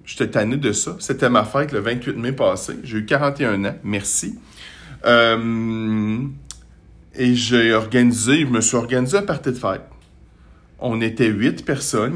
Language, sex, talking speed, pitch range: French, male, 160 wpm, 100-125 Hz